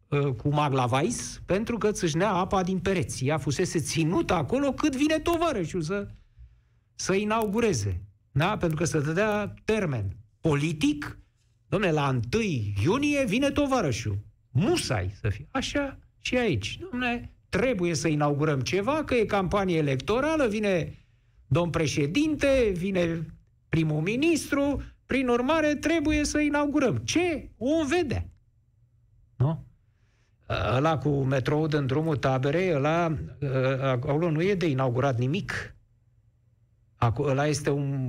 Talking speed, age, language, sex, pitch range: 120 wpm, 50-69, Romanian, male, 120-190 Hz